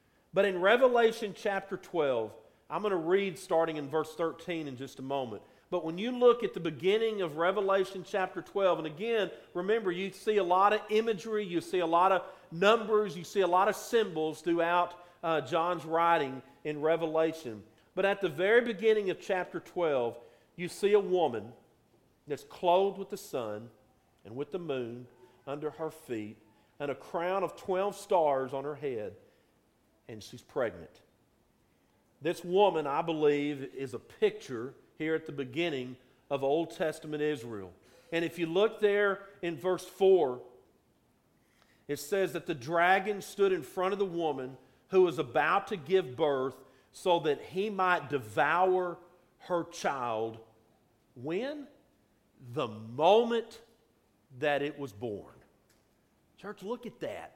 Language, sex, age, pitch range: English, male, 50-69, 145-200 Hz